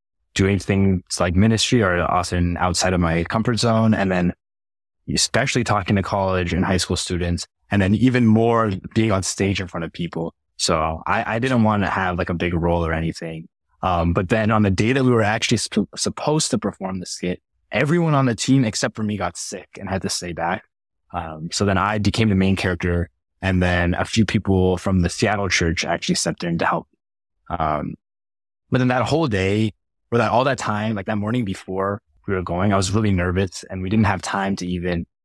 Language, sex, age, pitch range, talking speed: English, male, 20-39, 85-110 Hz, 210 wpm